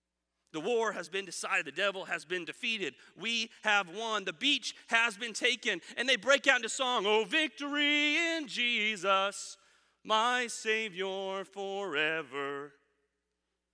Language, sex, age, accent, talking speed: English, male, 30-49, American, 135 wpm